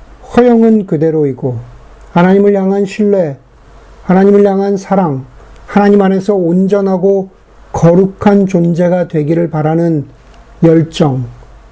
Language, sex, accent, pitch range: Korean, male, native, 145-195 Hz